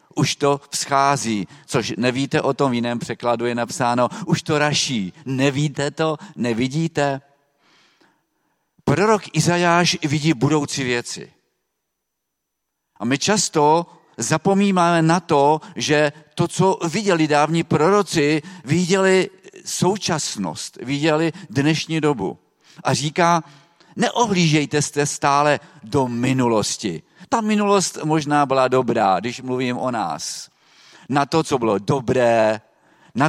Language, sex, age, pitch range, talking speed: Czech, male, 50-69, 125-160 Hz, 110 wpm